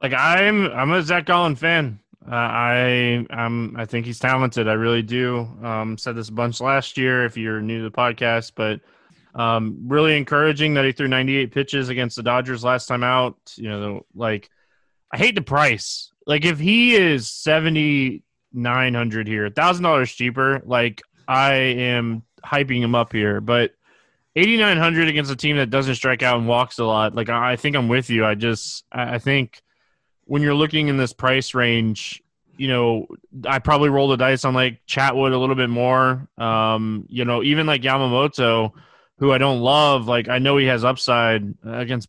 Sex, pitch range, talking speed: male, 115-140 Hz, 190 wpm